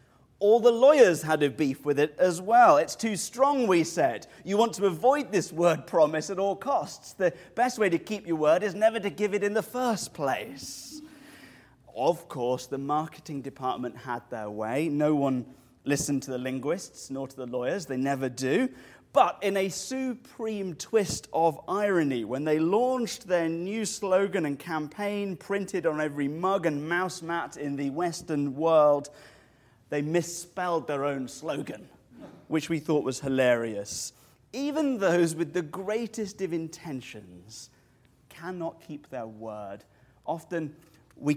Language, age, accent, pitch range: English, 30-49, British, 135-195 Hz